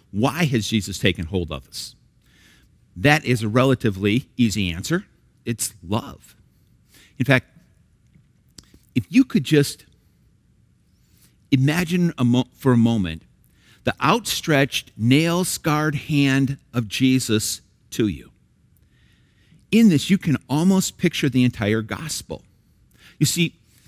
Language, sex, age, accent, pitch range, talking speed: English, male, 50-69, American, 110-145 Hz, 110 wpm